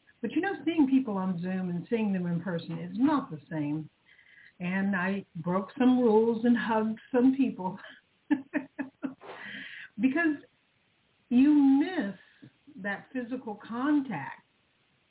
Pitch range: 175-235 Hz